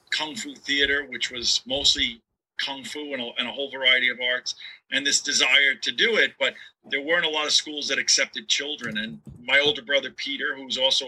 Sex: male